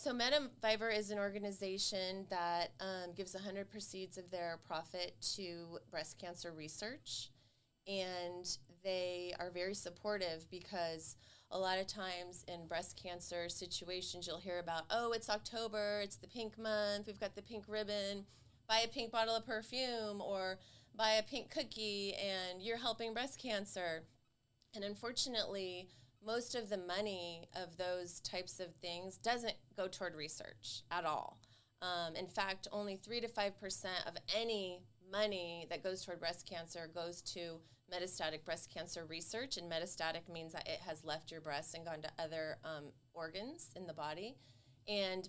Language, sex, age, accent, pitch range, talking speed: English, female, 30-49, American, 170-210 Hz, 155 wpm